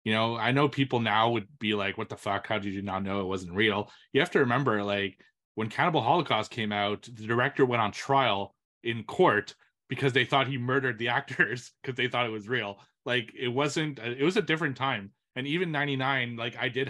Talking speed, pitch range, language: 225 wpm, 105-135 Hz, English